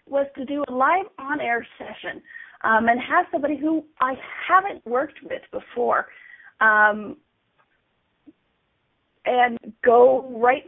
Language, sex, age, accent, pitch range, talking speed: English, female, 40-59, American, 220-280 Hz, 120 wpm